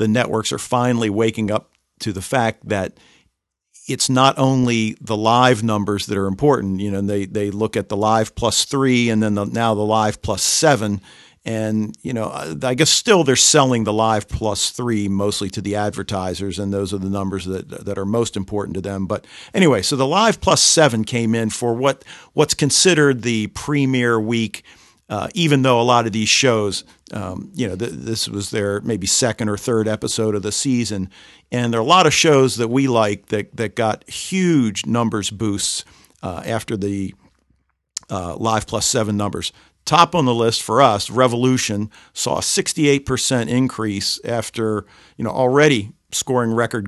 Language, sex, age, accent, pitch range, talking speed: English, male, 50-69, American, 100-120 Hz, 185 wpm